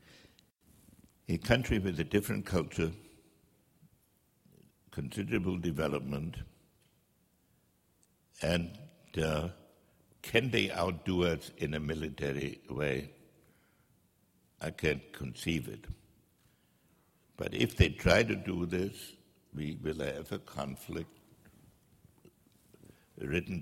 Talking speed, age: 90 wpm, 60-79